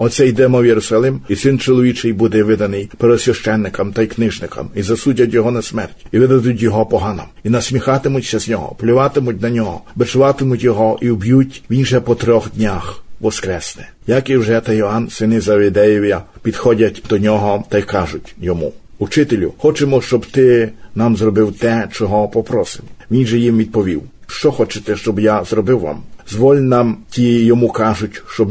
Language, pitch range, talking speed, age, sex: Ukrainian, 105-125 Hz, 165 wpm, 50-69, male